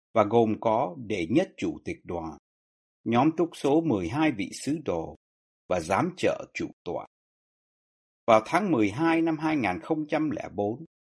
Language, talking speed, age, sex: Vietnamese, 135 wpm, 60-79, male